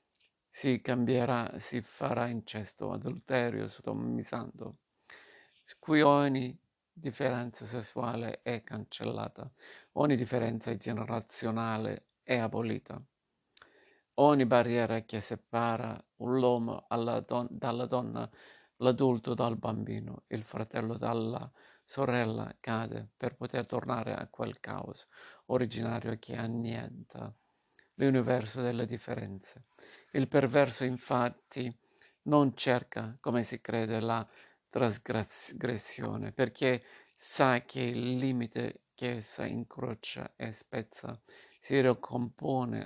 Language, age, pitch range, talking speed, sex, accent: Italian, 50-69, 115-130 Hz, 95 wpm, male, native